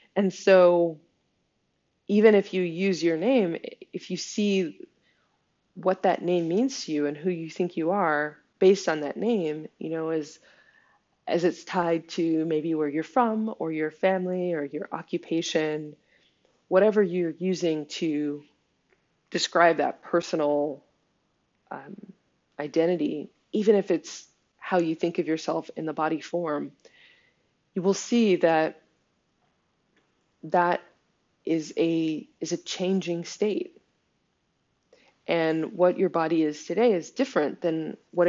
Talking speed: 135 wpm